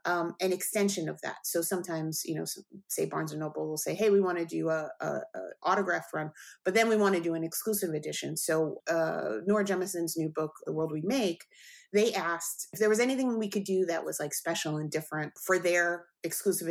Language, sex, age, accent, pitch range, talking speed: English, female, 30-49, American, 160-205 Hz, 225 wpm